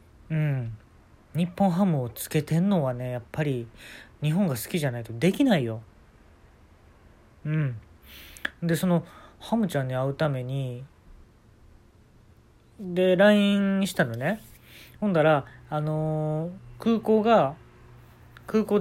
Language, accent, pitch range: Japanese, native, 115-170 Hz